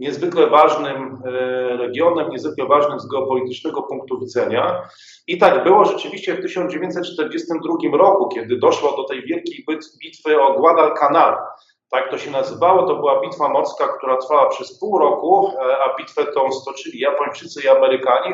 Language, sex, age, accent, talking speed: Polish, male, 40-59, native, 145 wpm